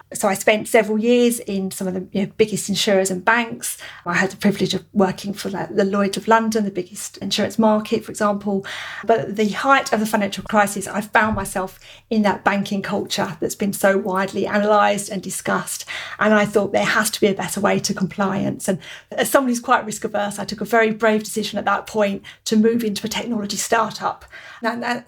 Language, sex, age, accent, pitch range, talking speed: English, female, 40-59, British, 195-225 Hz, 215 wpm